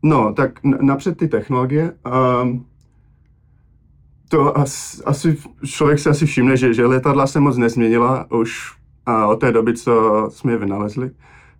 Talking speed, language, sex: 130 wpm, Slovak, male